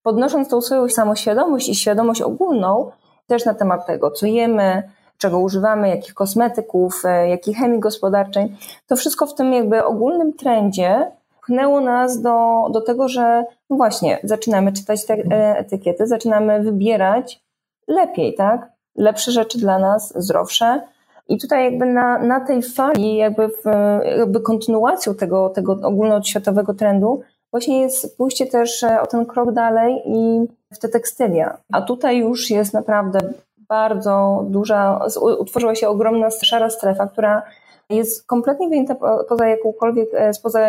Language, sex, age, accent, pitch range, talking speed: Polish, female, 20-39, native, 205-240 Hz, 135 wpm